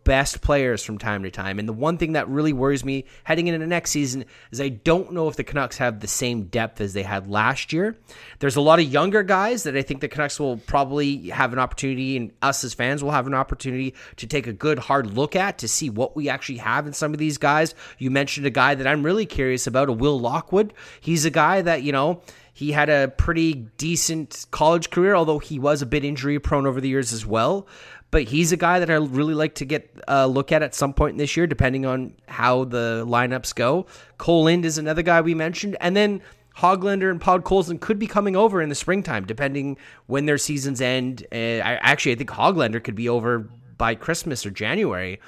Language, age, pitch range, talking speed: English, 30-49, 125-160 Hz, 235 wpm